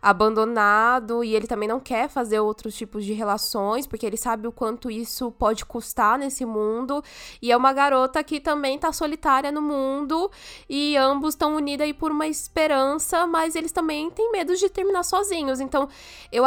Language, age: Portuguese, 10-29